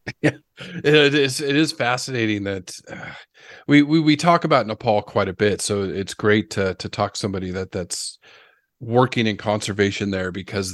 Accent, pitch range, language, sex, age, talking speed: American, 100-125 Hz, English, male, 30-49, 175 wpm